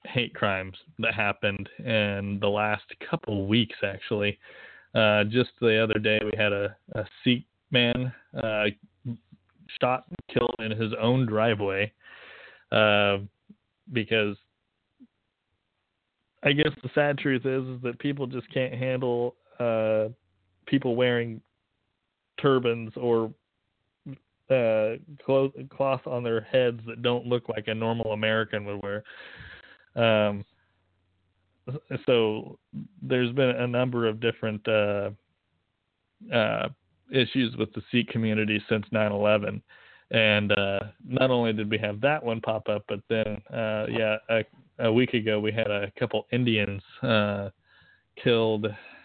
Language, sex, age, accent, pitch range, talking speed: English, male, 20-39, American, 105-120 Hz, 130 wpm